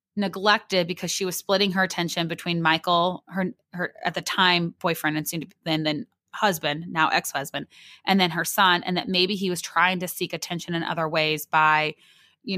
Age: 20-39